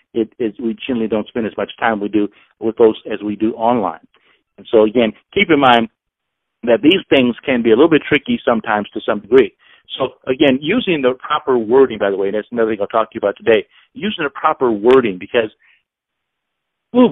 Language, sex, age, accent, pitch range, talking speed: English, male, 50-69, American, 115-160 Hz, 215 wpm